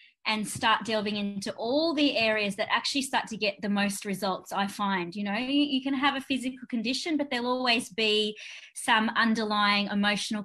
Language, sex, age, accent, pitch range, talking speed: English, female, 20-39, Australian, 205-245 Hz, 185 wpm